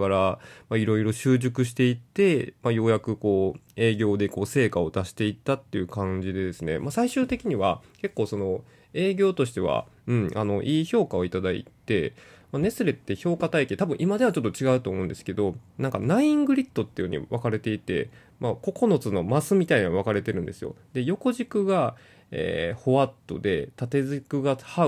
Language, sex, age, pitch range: Japanese, male, 20-39, 110-155 Hz